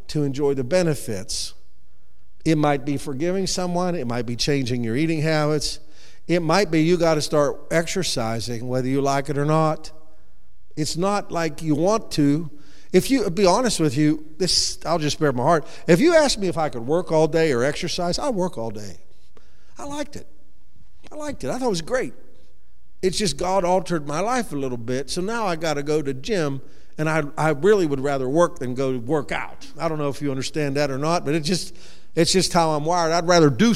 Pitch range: 145-205 Hz